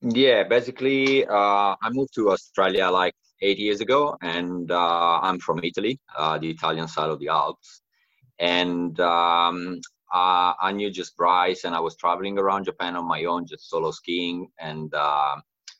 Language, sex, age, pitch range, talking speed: English, male, 30-49, 80-100 Hz, 170 wpm